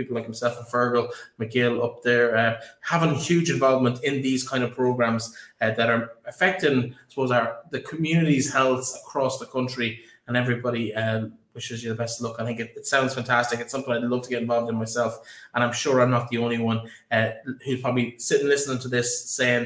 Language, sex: English, male